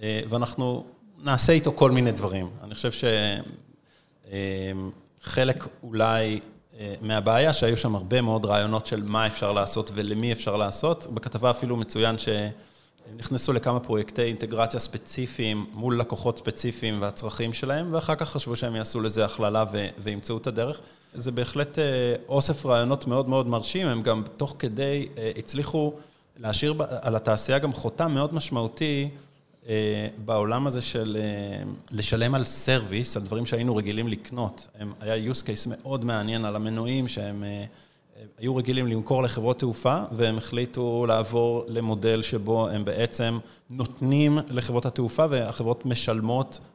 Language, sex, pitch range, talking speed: Hebrew, male, 110-130 Hz, 135 wpm